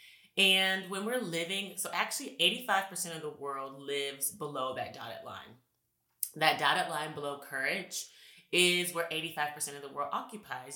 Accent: American